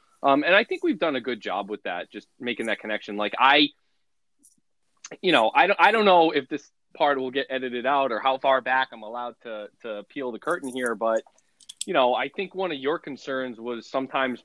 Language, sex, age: English, male, 20-39